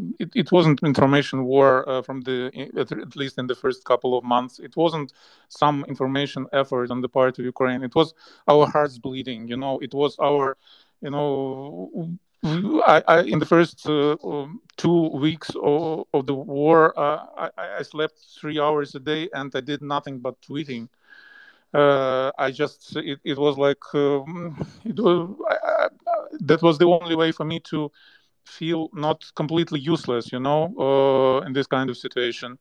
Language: English